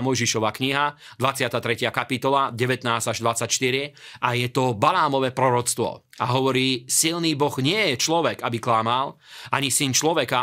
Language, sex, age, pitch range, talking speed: Slovak, male, 30-49, 125-140 Hz, 125 wpm